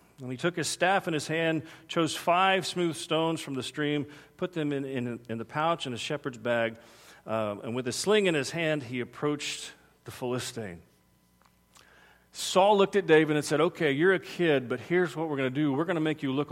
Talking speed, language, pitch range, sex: 220 wpm, English, 120-160 Hz, male